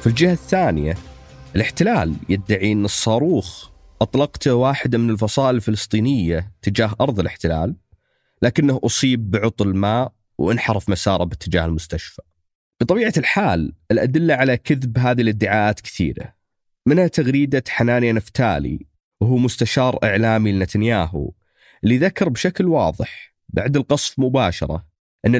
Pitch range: 95-130 Hz